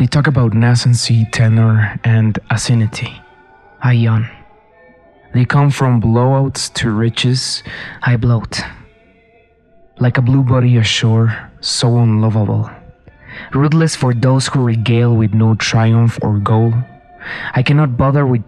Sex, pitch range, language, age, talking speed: male, 110-130 Hz, English, 20-39, 125 wpm